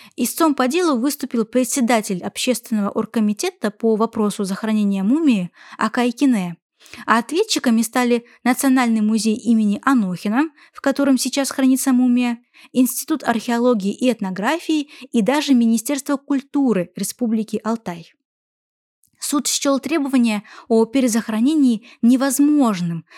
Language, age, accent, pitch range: Russian, 20-39, native, 220-275 Hz